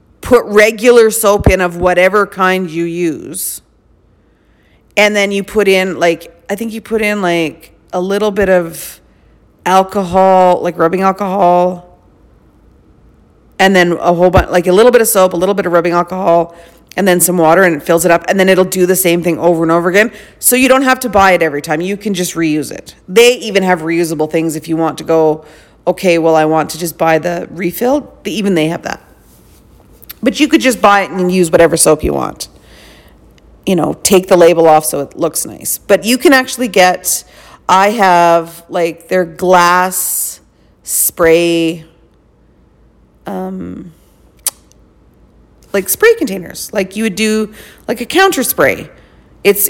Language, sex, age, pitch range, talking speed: English, female, 40-59, 165-205 Hz, 180 wpm